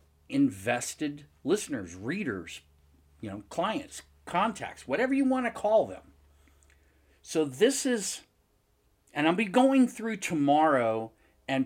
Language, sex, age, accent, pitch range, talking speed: English, male, 50-69, American, 110-160 Hz, 120 wpm